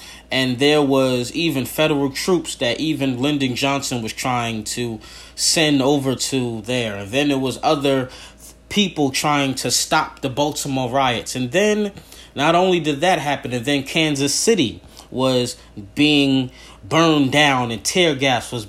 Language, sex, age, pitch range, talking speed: English, male, 30-49, 120-150 Hz, 155 wpm